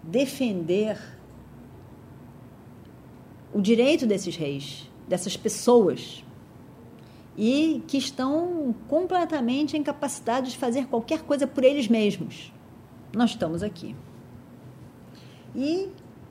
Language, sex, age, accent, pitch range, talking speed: Portuguese, female, 40-59, Brazilian, 185-275 Hz, 85 wpm